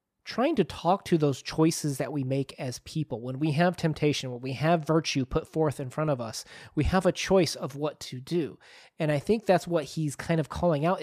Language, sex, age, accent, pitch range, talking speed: English, male, 30-49, American, 150-195 Hz, 235 wpm